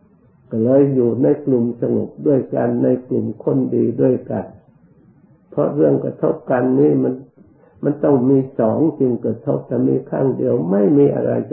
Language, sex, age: Thai, male, 60-79